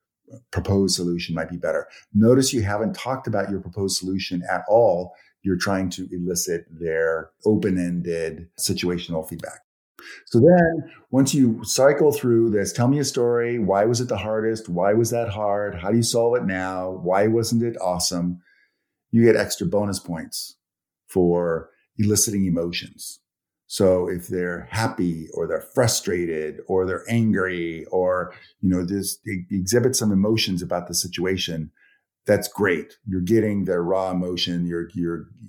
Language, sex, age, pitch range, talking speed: English, male, 50-69, 90-115 Hz, 150 wpm